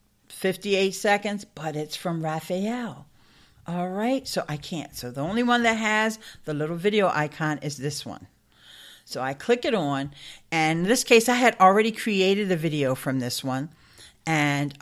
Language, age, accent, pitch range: English, 50-69, American, 150-215 Hz